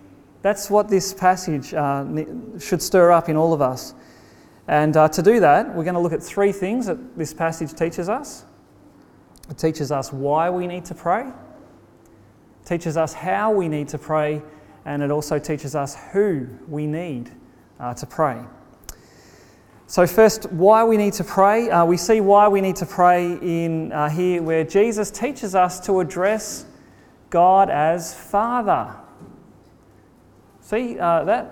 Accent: Australian